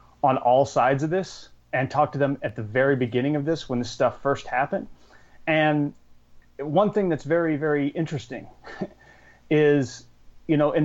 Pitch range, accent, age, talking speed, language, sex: 120-165 Hz, American, 30-49, 170 wpm, English, male